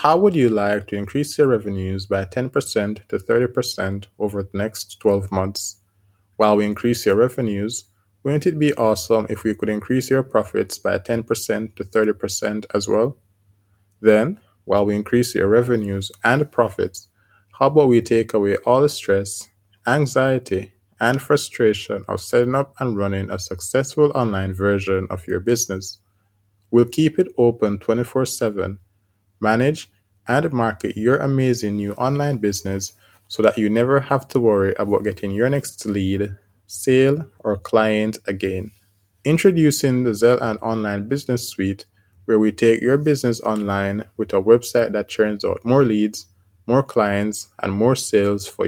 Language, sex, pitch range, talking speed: English, male, 100-120 Hz, 155 wpm